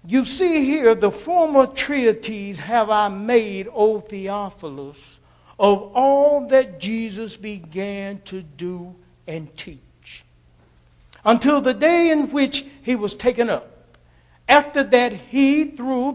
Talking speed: 125 wpm